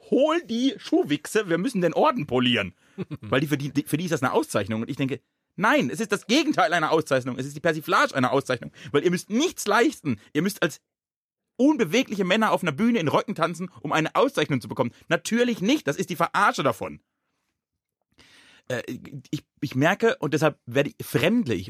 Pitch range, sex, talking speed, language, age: 130-190 Hz, male, 195 wpm, German, 30-49